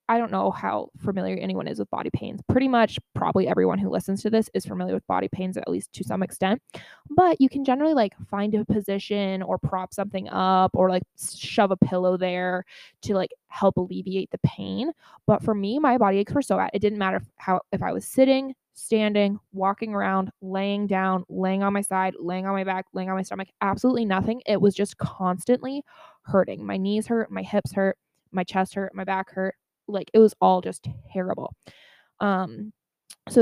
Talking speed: 205 wpm